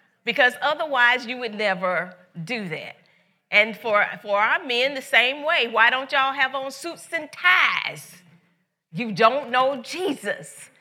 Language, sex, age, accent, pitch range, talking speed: English, female, 40-59, American, 185-260 Hz, 150 wpm